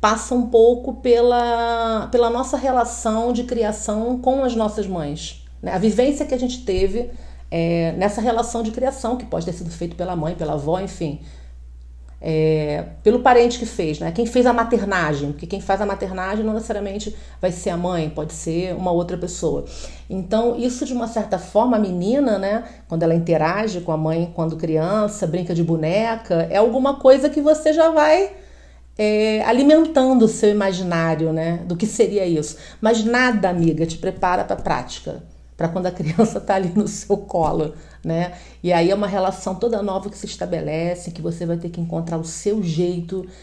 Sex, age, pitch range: female, 40-59, 170-230 Hz